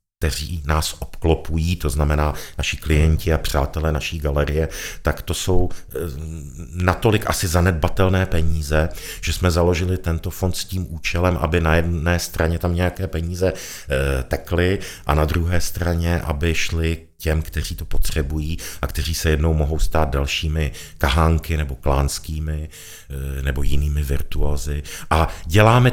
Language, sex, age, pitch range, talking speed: Czech, male, 50-69, 75-95 Hz, 135 wpm